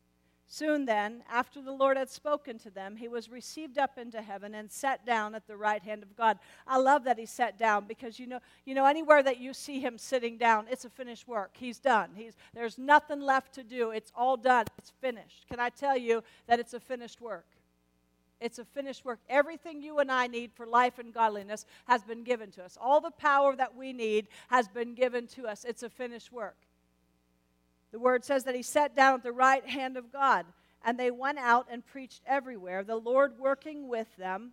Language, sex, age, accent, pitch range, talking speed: English, female, 50-69, American, 225-270 Hz, 220 wpm